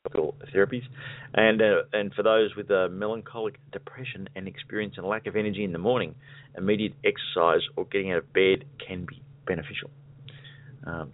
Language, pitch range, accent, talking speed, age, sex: English, 100-140 Hz, Australian, 160 wpm, 30-49, male